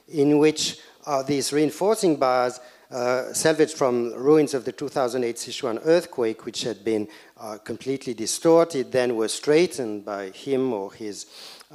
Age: 50-69